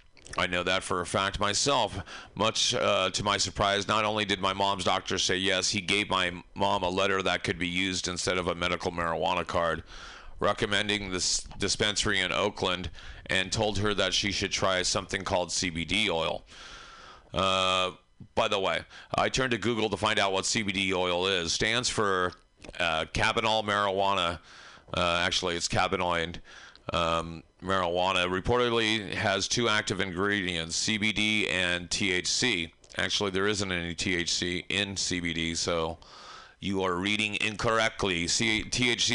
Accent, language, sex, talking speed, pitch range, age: American, English, male, 155 wpm, 90-105 Hz, 40-59